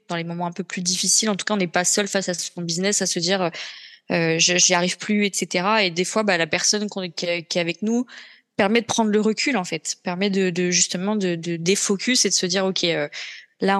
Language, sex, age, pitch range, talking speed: French, female, 20-39, 180-210 Hz, 255 wpm